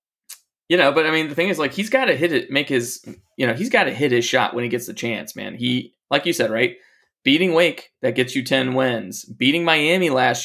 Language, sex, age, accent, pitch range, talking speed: English, male, 20-39, American, 115-145 Hz, 260 wpm